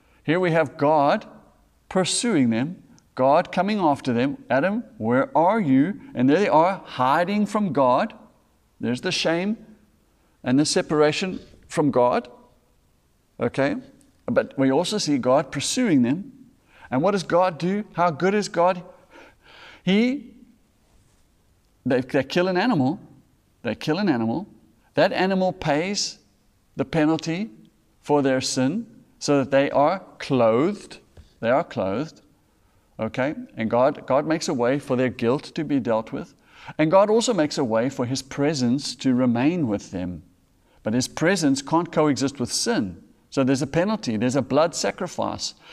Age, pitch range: 50-69, 130-180 Hz